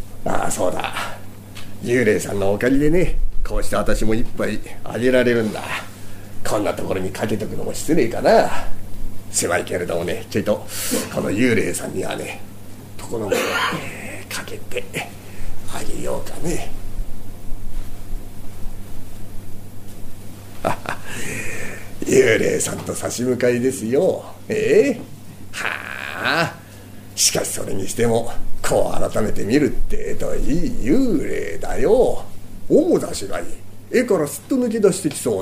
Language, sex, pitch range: Japanese, male, 100-125 Hz